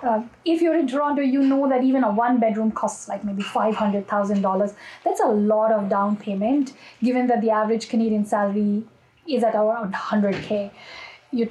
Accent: Indian